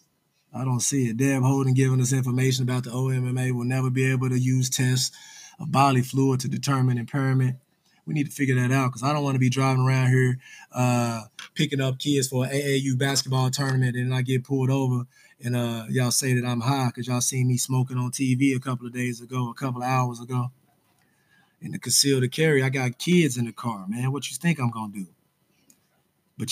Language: English